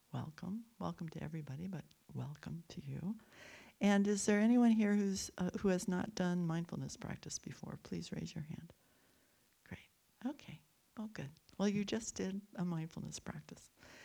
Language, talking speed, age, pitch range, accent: English, 160 wpm, 60-79, 170-205 Hz, American